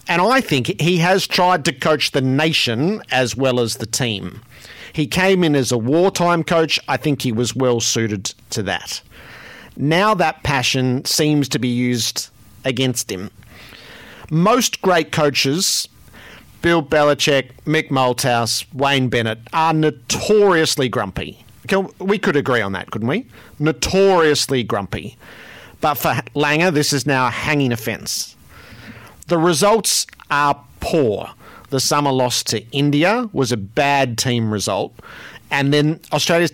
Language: English